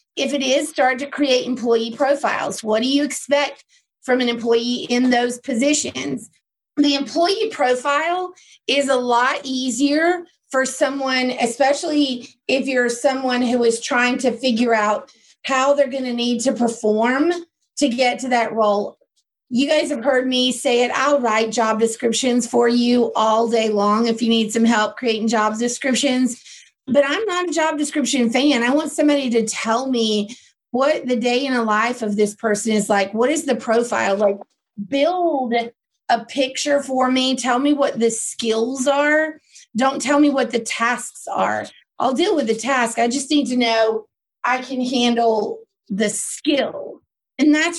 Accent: American